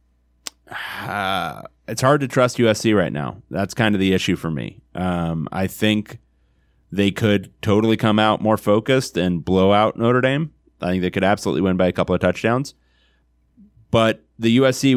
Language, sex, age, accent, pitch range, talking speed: English, male, 30-49, American, 85-105 Hz, 175 wpm